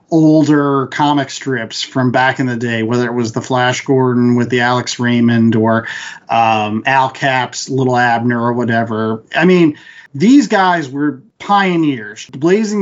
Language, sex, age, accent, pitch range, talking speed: English, male, 40-59, American, 135-175 Hz, 155 wpm